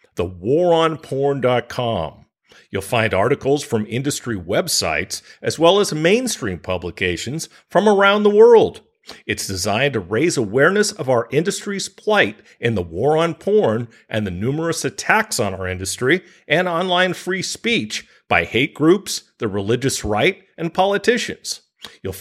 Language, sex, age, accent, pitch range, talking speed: English, male, 50-69, American, 110-185 Hz, 135 wpm